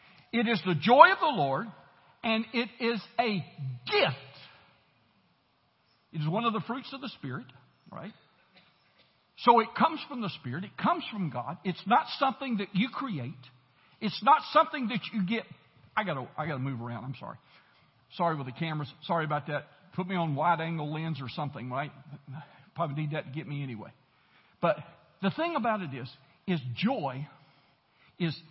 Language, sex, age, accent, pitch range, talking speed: English, male, 60-79, American, 150-220 Hz, 175 wpm